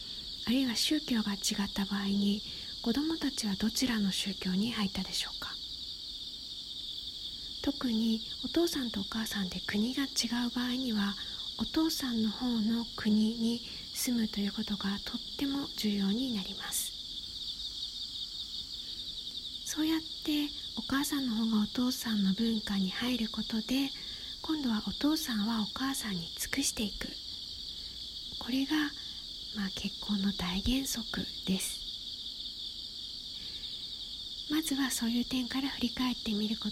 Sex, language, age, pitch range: female, Japanese, 40-59, 205-255 Hz